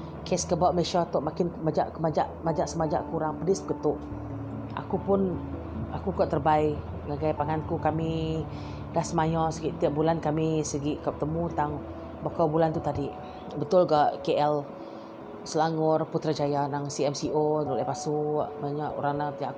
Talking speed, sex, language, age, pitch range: 145 wpm, female, Malay, 30-49, 145-180 Hz